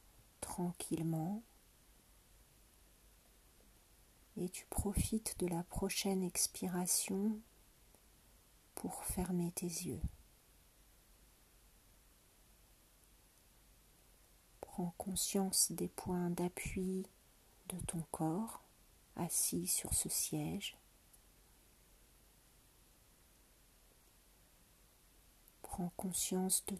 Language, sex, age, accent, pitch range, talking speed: French, female, 40-59, French, 175-195 Hz, 60 wpm